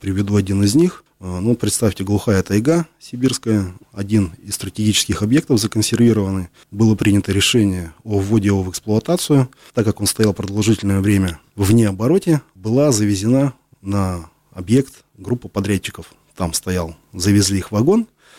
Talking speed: 135 wpm